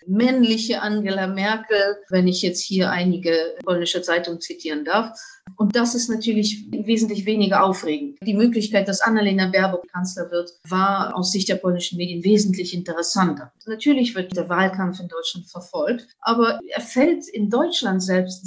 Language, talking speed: English, 155 wpm